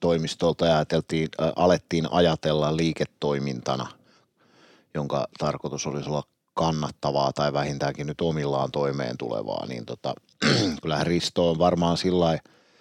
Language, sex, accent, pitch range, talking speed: Finnish, male, native, 75-90 Hz, 110 wpm